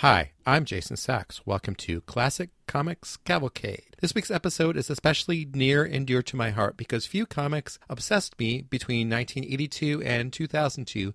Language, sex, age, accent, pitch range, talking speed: English, male, 40-59, American, 125-165 Hz, 155 wpm